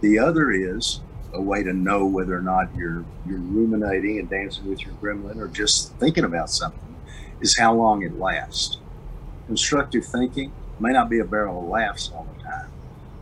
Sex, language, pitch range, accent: male, English, 100-130 Hz, American